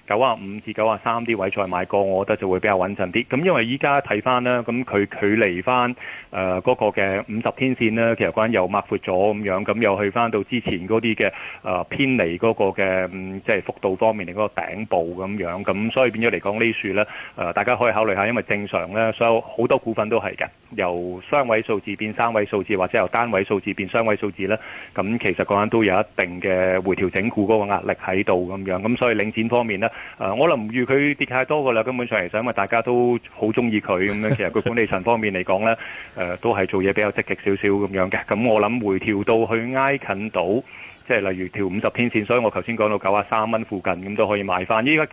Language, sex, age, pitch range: Chinese, male, 30-49, 95-115 Hz